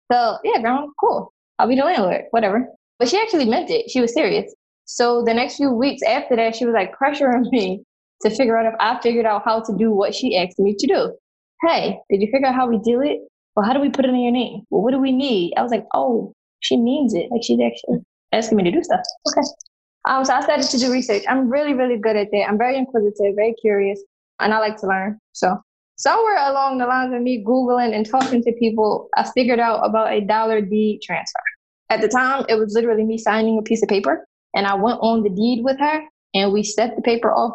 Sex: female